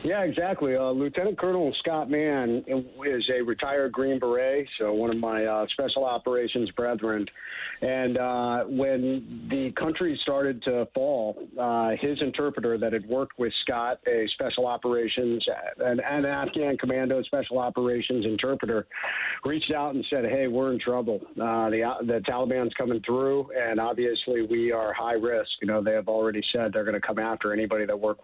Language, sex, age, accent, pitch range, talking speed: English, male, 50-69, American, 115-130 Hz, 170 wpm